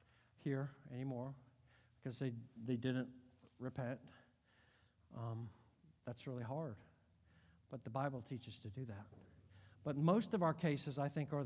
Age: 50-69